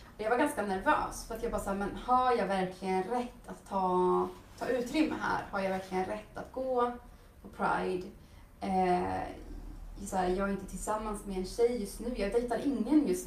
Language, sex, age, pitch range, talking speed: Swedish, female, 20-39, 185-235 Hz, 200 wpm